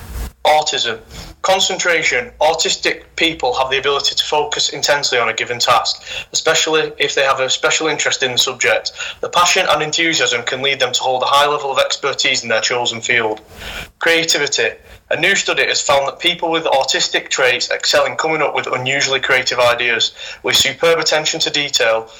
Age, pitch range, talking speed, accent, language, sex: 20-39, 125-165 Hz, 180 wpm, British, English, male